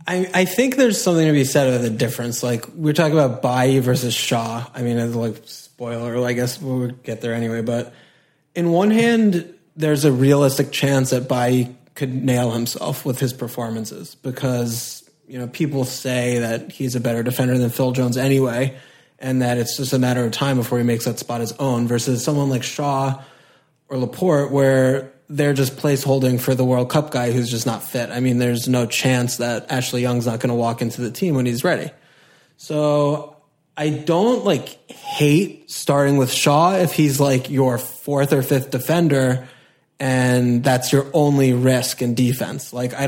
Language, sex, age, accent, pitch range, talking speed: English, male, 20-39, American, 125-145 Hz, 190 wpm